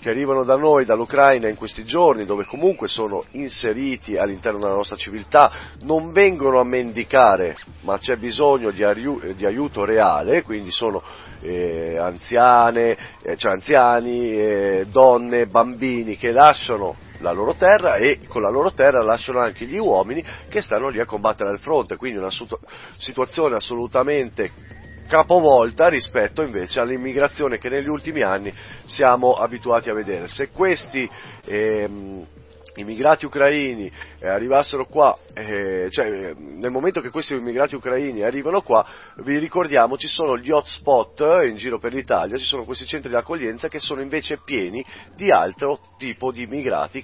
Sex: male